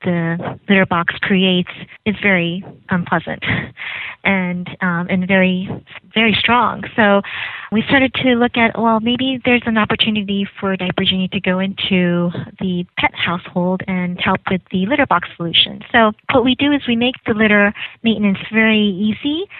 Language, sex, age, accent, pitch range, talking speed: English, female, 30-49, American, 190-230 Hz, 160 wpm